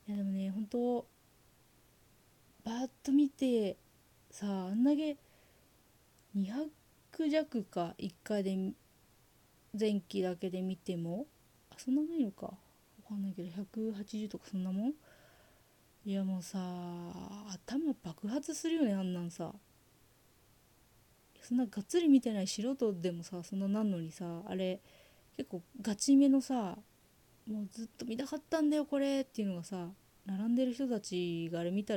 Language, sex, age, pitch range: Japanese, female, 20-39, 190-270 Hz